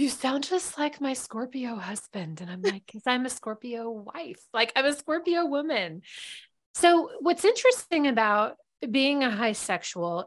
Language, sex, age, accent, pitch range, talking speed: English, female, 30-49, American, 185-250 Hz, 165 wpm